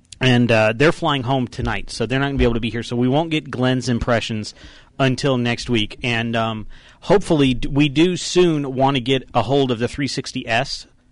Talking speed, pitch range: 210 wpm, 110-130 Hz